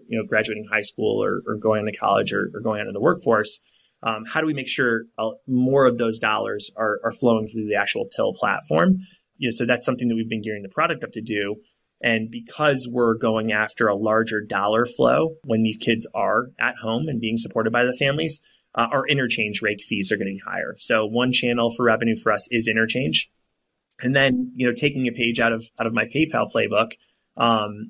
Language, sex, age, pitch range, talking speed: English, male, 20-39, 110-120 Hz, 220 wpm